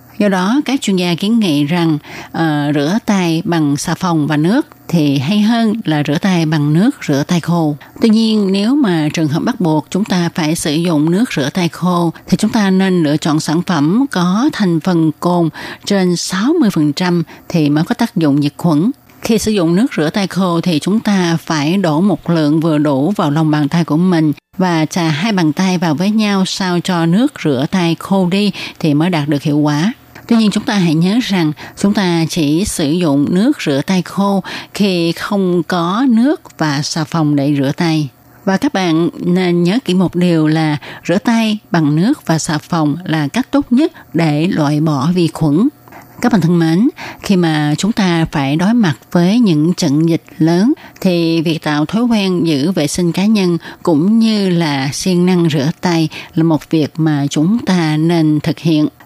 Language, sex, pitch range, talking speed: Vietnamese, female, 155-195 Hz, 205 wpm